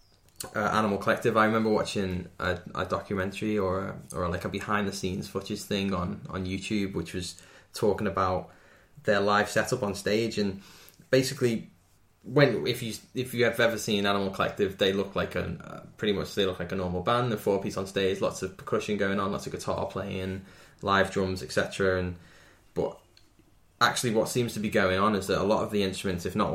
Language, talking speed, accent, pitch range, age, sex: English, 200 wpm, British, 95-105 Hz, 10-29, male